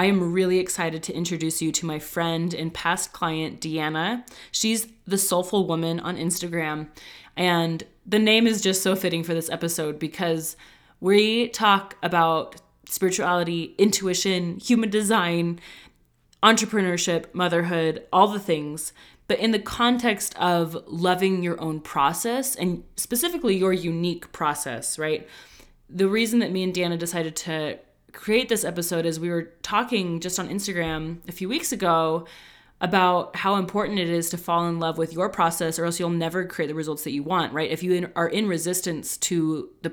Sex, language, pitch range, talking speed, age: female, English, 165-190 Hz, 165 wpm, 20-39